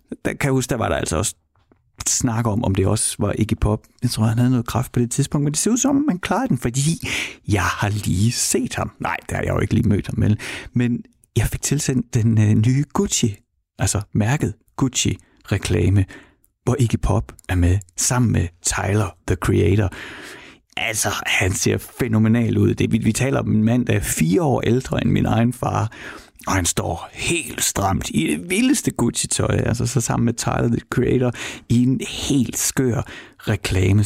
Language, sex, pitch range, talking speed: Danish, male, 100-130 Hz, 195 wpm